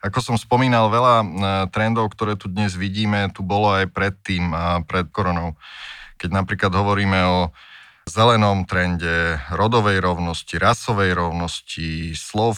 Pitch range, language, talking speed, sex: 90-110 Hz, Slovak, 130 wpm, male